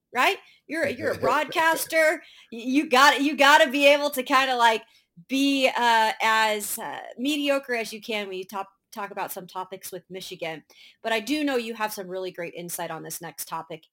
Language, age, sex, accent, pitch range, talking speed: English, 30-49, female, American, 185-255 Hz, 205 wpm